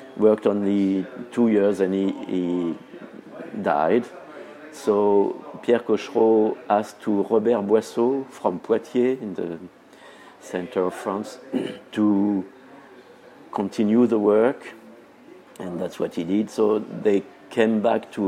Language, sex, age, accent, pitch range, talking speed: English, male, 50-69, French, 95-115 Hz, 120 wpm